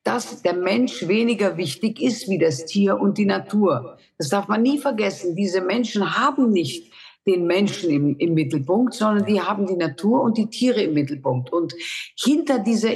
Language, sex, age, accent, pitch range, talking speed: German, female, 50-69, German, 170-225 Hz, 180 wpm